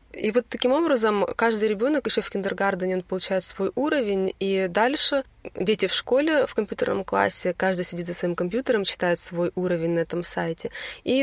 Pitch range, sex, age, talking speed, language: 180-215 Hz, female, 20-39, 170 wpm, English